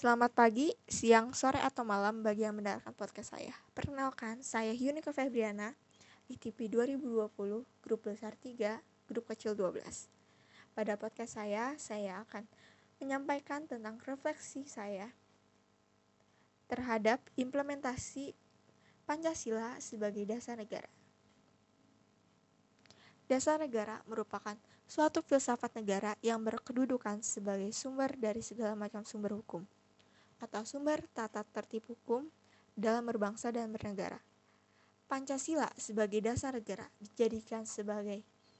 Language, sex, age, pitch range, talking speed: Indonesian, female, 20-39, 210-260 Hz, 105 wpm